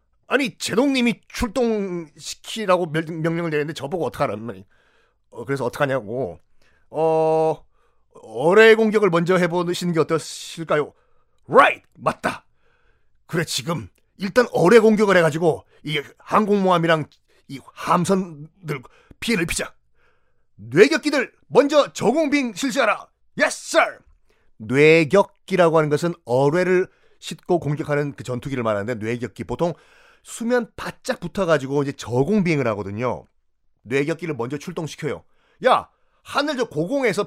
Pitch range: 135-210 Hz